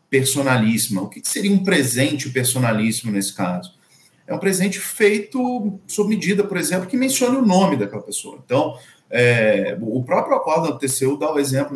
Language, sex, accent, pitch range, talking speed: Portuguese, male, Brazilian, 115-165 Hz, 165 wpm